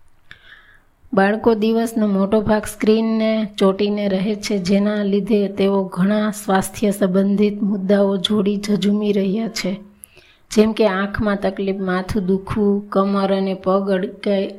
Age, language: 20-39, Gujarati